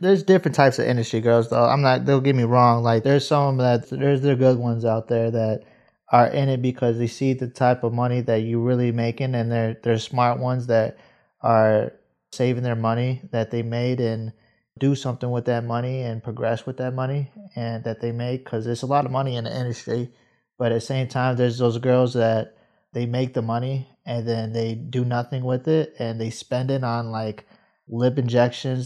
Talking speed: 220 wpm